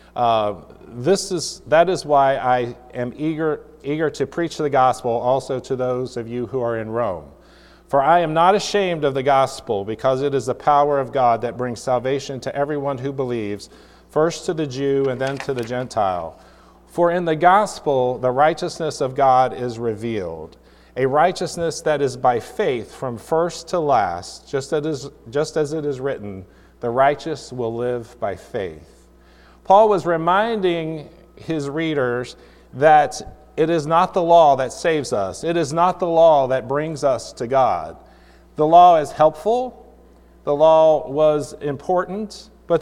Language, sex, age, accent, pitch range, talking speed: English, male, 40-59, American, 125-160 Hz, 170 wpm